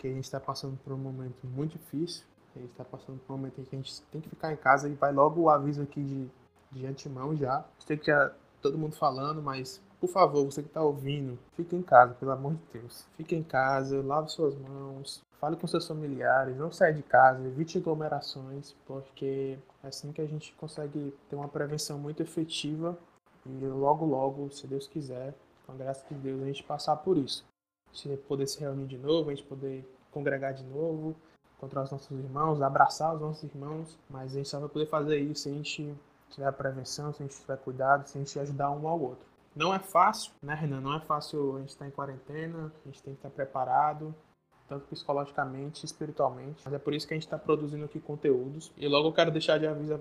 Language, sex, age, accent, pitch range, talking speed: Portuguese, male, 20-39, Brazilian, 135-155 Hz, 225 wpm